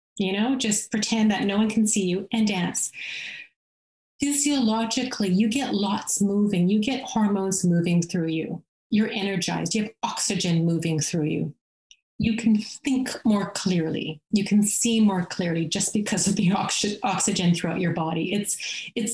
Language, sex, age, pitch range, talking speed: Romanian, female, 30-49, 185-225 Hz, 160 wpm